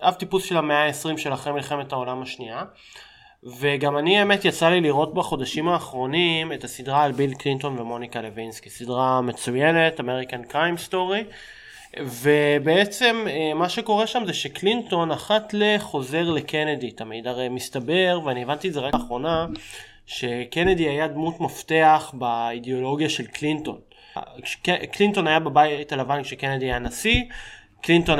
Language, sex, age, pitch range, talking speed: Hebrew, male, 20-39, 140-185 Hz, 135 wpm